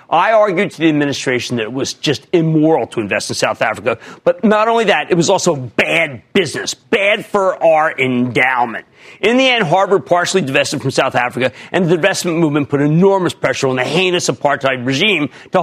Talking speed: 190 wpm